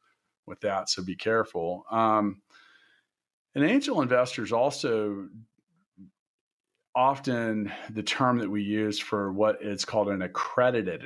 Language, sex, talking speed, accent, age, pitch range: English, male, 125 wpm, American, 40-59, 100-115 Hz